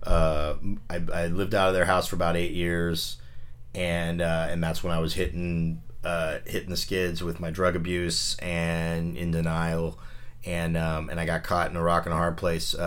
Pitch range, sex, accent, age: 80-90 Hz, male, American, 30-49